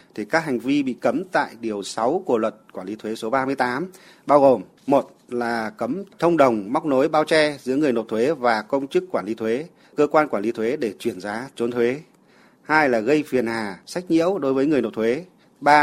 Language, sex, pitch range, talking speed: Vietnamese, male, 115-150 Hz, 230 wpm